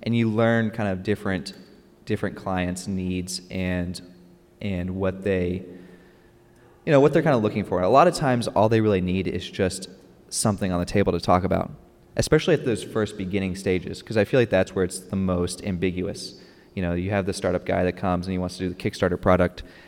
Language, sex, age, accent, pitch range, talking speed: English, male, 20-39, American, 95-110 Hz, 215 wpm